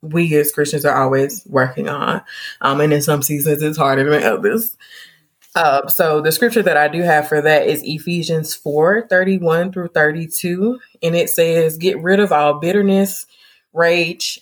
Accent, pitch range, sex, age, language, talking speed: American, 150-195 Hz, female, 20-39, English, 170 wpm